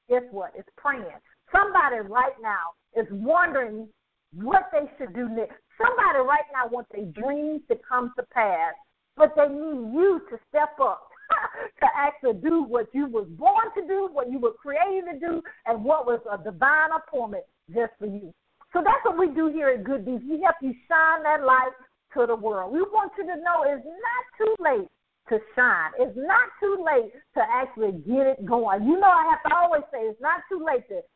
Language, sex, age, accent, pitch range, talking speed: English, female, 50-69, American, 235-335 Hz, 200 wpm